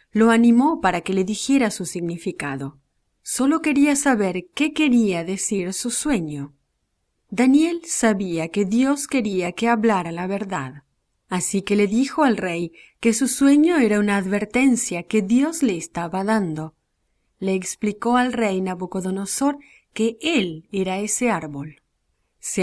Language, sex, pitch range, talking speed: English, female, 180-240 Hz, 140 wpm